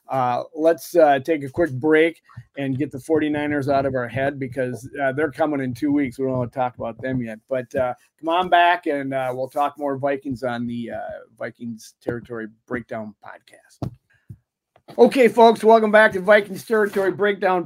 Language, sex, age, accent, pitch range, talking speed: English, male, 40-59, American, 130-165 Hz, 190 wpm